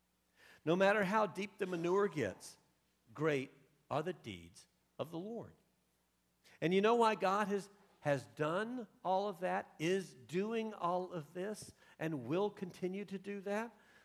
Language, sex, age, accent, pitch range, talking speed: English, male, 50-69, American, 135-185 Hz, 155 wpm